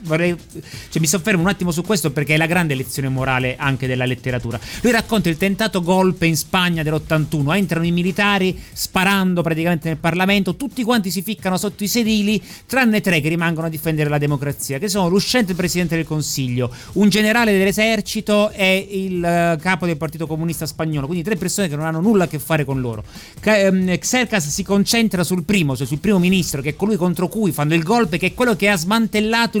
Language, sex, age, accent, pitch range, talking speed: Italian, male, 30-49, native, 160-205 Hz, 195 wpm